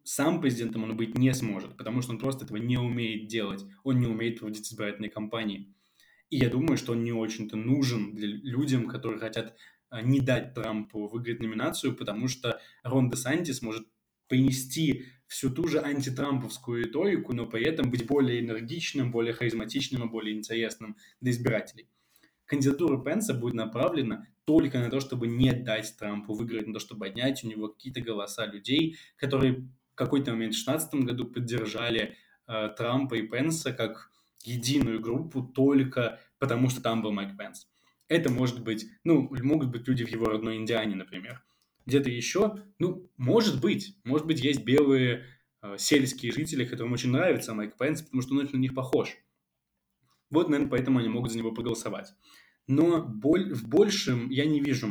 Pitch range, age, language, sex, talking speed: 110-135 Hz, 20-39, Russian, male, 170 wpm